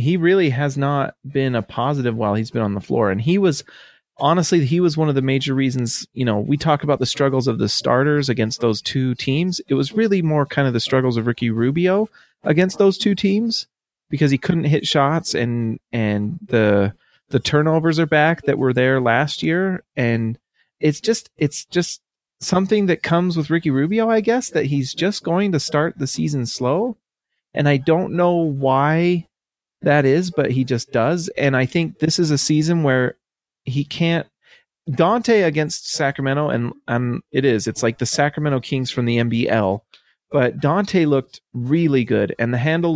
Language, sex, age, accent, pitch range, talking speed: English, male, 30-49, American, 120-165 Hz, 190 wpm